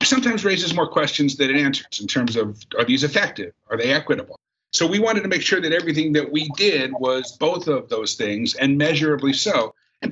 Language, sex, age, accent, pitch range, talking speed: English, male, 50-69, American, 130-165 Hz, 215 wpm